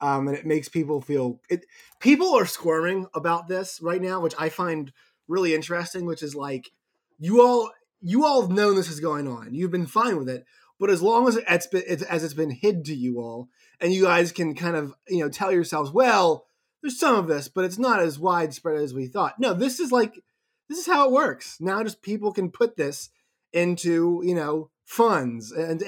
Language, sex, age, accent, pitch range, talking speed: English, male, 20-39, American, 140-190 Hz, 220 wpm